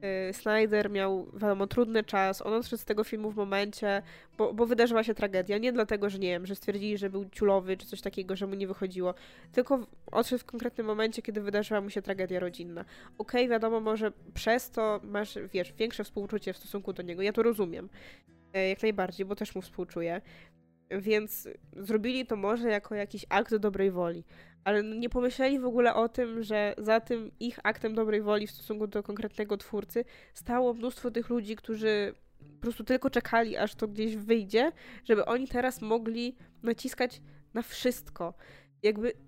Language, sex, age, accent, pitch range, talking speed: Polish, female, 20-39, native, 190-230 Hz, 180 wpm